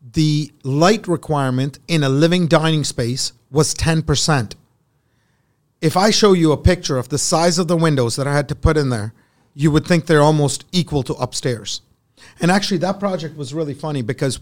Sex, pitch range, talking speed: male, 135-170 Hz, 185 wpm